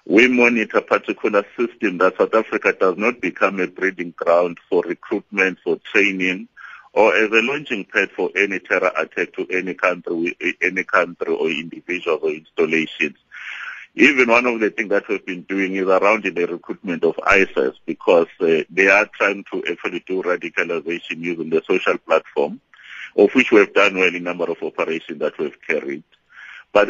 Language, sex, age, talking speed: English, male, 60-79, 175 wpm